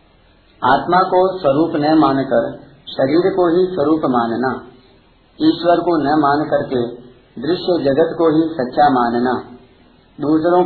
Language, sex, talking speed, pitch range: Hindi, male, 125 wpm, 125-160 Hz